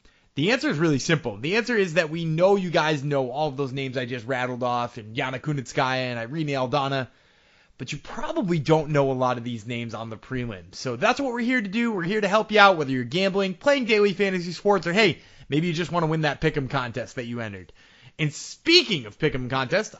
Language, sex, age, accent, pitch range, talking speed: English, male, 20-39, American, 140-200 Hz, 240 wpm